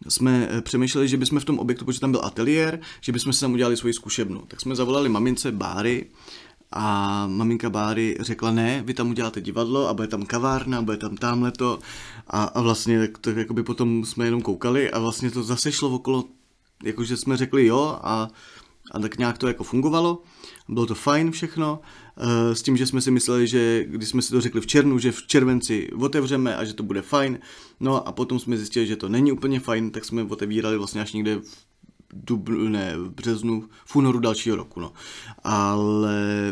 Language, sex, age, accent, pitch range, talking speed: Czech, male, 30-49, native, 105-125 Hz, 200 wpm